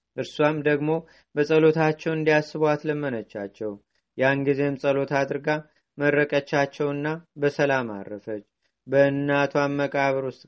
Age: 30-49